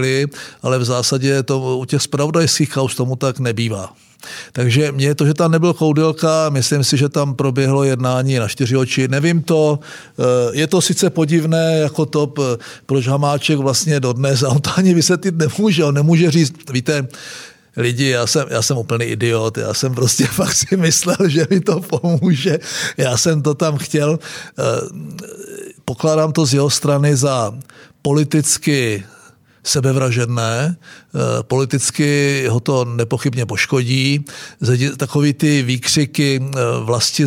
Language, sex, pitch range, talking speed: Czech, male, 125-150 Hz, 140 wpm